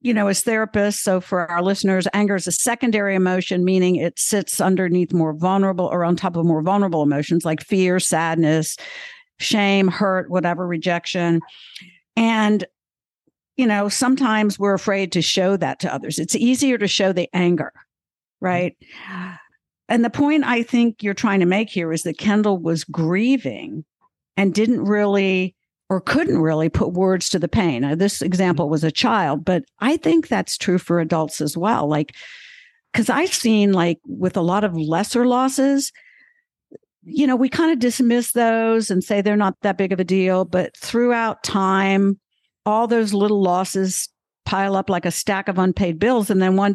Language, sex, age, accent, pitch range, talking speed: English, female, 60-79, American, 180-225 Hz, 175 wpm